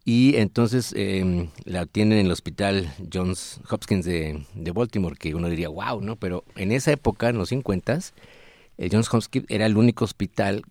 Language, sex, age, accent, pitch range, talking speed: Spanish, male, 50-69, Mexican, 85-110 Hz, 180 wpm